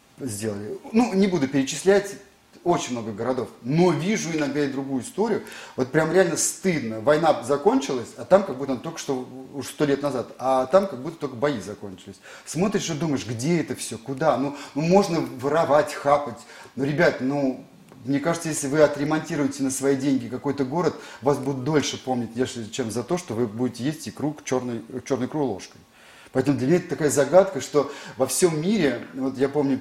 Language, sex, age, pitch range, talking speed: Russian, male, 30-49, 125-155 Hz, 185 wpm